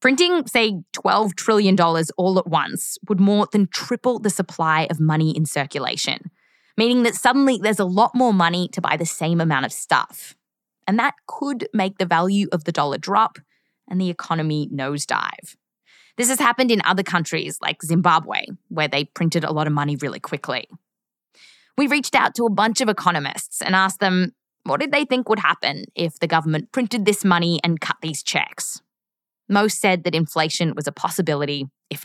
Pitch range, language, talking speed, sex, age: 160-225 Hz, English, 185 wpm, female, 20-39